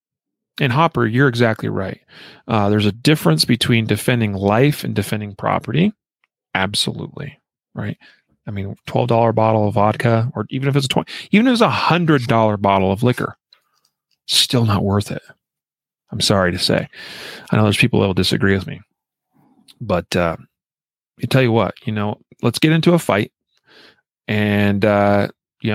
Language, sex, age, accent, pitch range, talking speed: English, male, 40-59, American, 105-140 Hz, 170 wpm